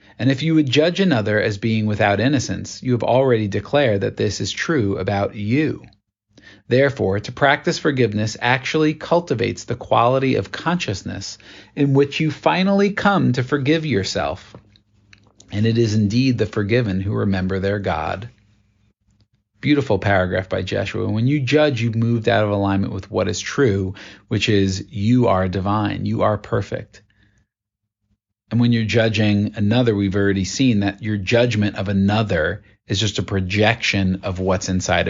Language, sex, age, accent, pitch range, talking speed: English, male, 40-59, American, 100-120 Hz, 155 wpm